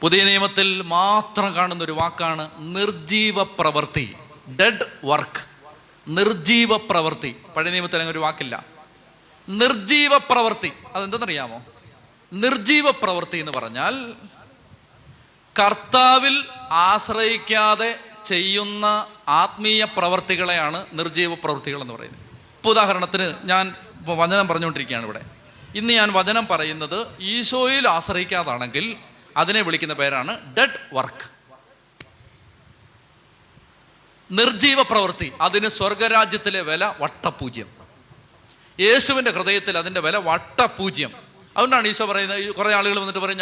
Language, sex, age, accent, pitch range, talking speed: Malayalam, male, 30-49, native, 155-210 Hz, 90 wpm